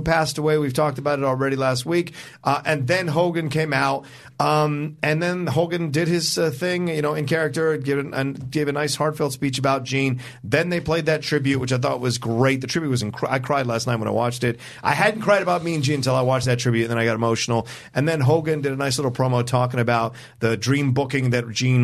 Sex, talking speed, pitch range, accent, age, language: male, 245 wpm, 115-150 Hz, American, 40-59, English